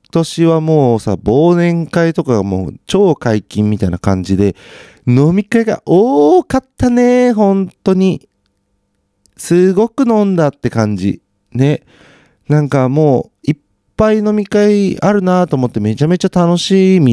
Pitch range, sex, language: 100-165 Hz, male, Japanese